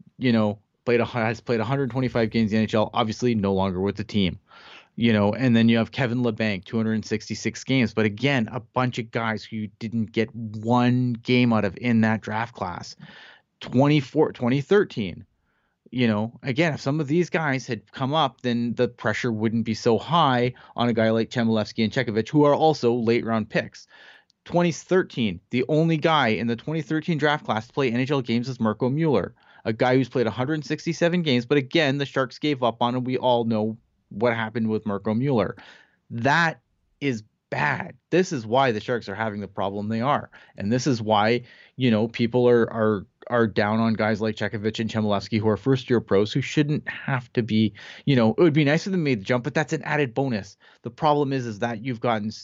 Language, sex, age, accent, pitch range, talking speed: English, male, 30-49, American, 110-140 Hz, 205 wpm